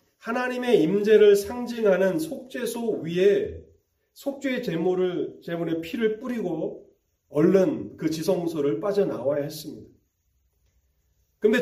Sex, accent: male, native